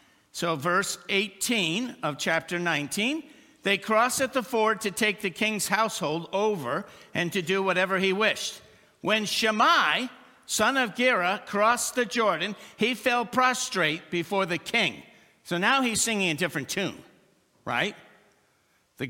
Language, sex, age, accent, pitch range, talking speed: English, male, 60-79, American, 185-245 Hz, 145 wpm